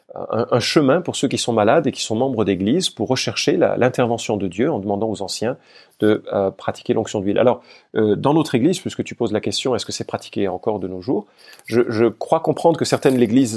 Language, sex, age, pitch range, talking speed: French, male, 40-59, 100-135 Hz, 230 wpm